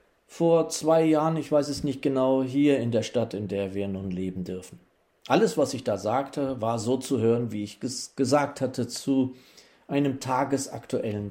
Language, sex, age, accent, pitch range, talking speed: German, male, 40-59, German, 135-180 Hz, 185 wpm